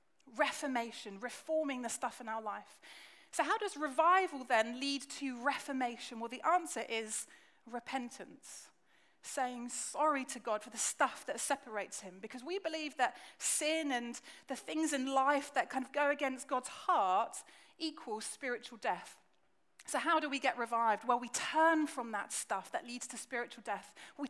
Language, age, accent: English, 30-49, British